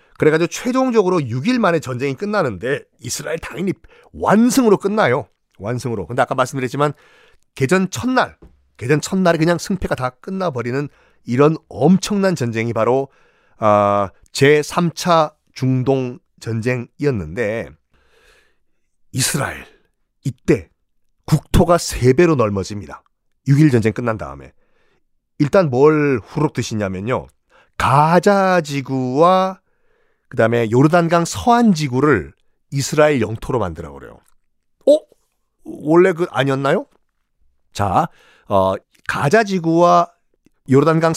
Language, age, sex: Korean, 40-59, male